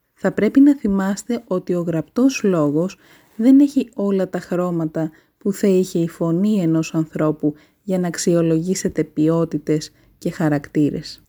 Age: 20-39